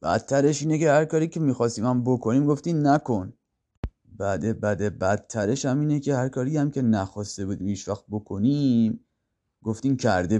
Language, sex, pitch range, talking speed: Persian, male, 90-125 Hz, 160 wpm